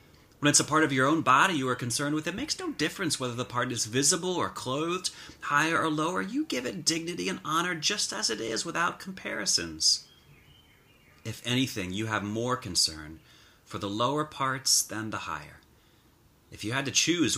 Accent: American